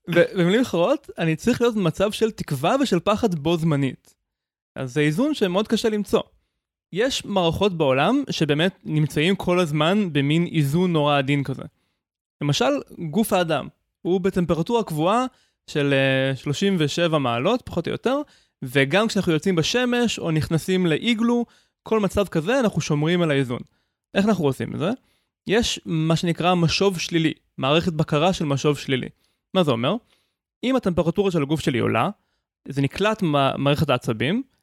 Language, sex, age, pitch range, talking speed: Hebrew, male, 20-39, 145-195 Hz, 145 wpm